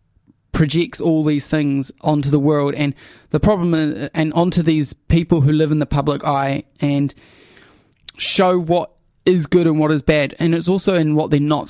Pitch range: 145-170 Hz